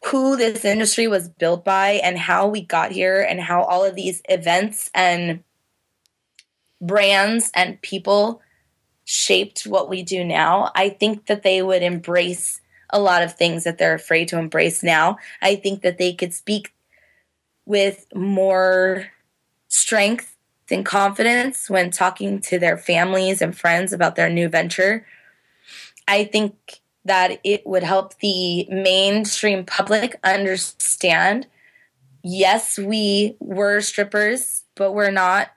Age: 20-39